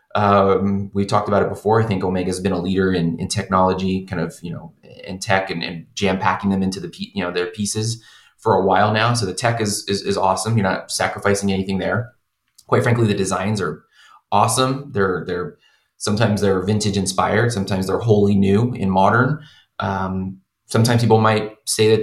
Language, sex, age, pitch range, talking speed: English, male, 20-39, 95-120 Hz, 200 wpm